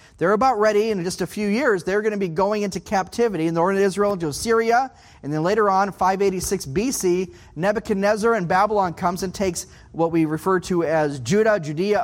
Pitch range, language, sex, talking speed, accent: 185-235 Hz, English, male, 205 wpm, American